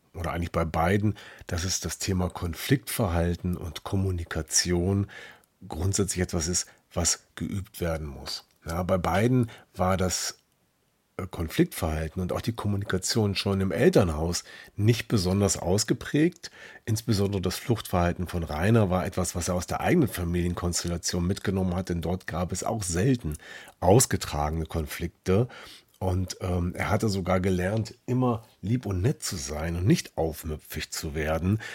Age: 40-59